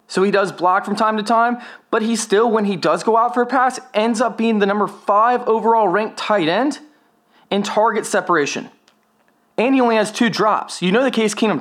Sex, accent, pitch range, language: male, American, 190-225 Hz, English